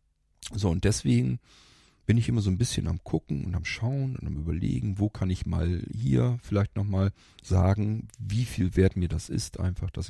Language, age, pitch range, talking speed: German, 40-59, 85-110 Hz, 195 wpm